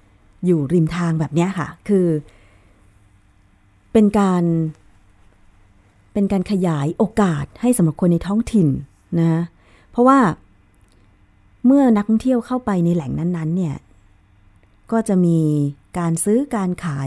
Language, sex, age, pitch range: Thai, female, 30-49, 140-210 Hz